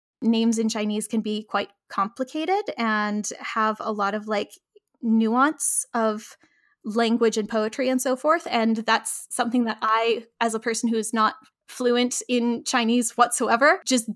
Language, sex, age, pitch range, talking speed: English, female, 10-29, 220-245 Hz, 155 wpm